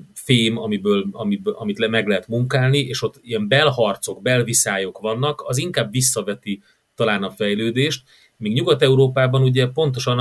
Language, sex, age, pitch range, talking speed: Hungarian, male, 30-49, 110-140 Hz, 130 wpm